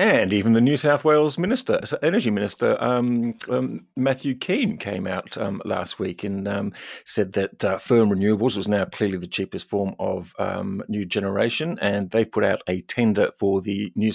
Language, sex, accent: English, male, British